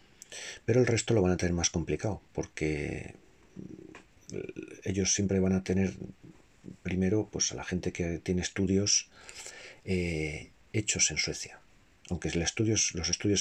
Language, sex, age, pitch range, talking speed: Spanish, male, 40-59, 85-105 Hz, 130 wpm